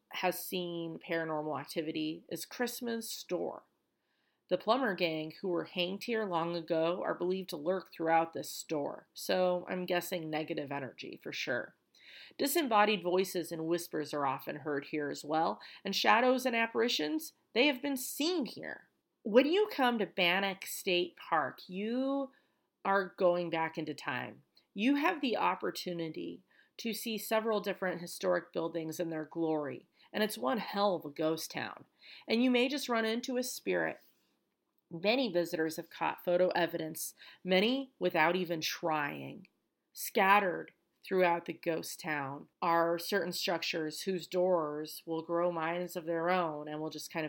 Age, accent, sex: 40-59, American, female